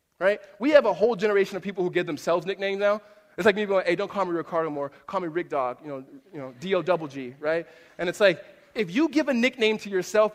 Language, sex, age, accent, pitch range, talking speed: English, male, 20-39, American, 160-225 Hz, 250 wpm